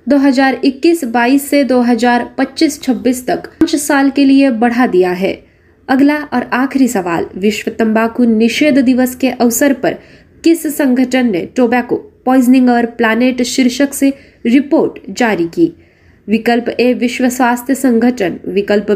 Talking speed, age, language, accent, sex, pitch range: 145 wpm, 20-39, Marathi, native, female, 230-275 Hz